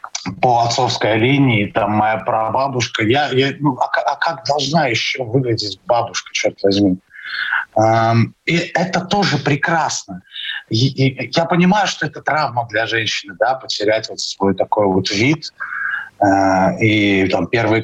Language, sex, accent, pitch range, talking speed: Russian, male, native, 115-150 Hz, 145 wpm